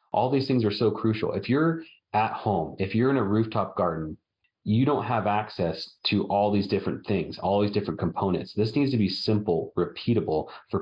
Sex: male